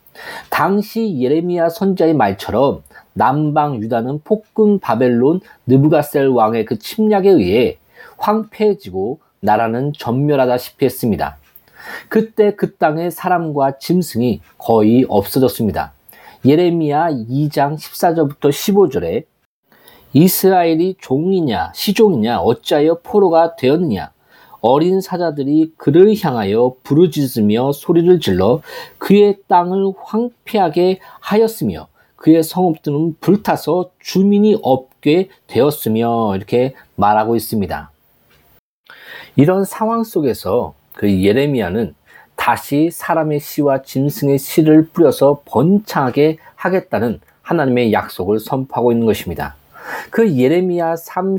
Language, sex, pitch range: Korean, male, 130-185 Hz